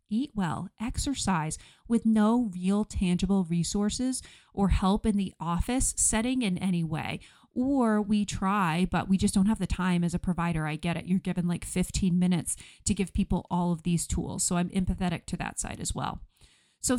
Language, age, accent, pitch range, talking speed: English, 30-49, American, 180-220 Hz, 190 wpm